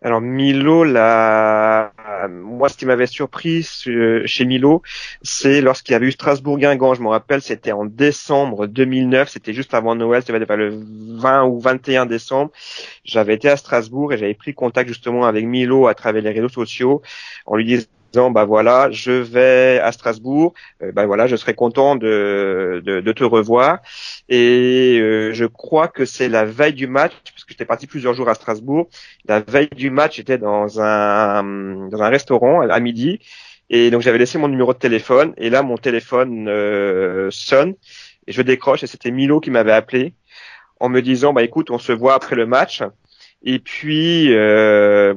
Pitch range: 110-135 Hz